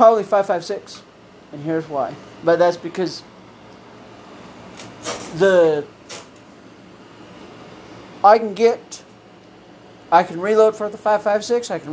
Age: 50-69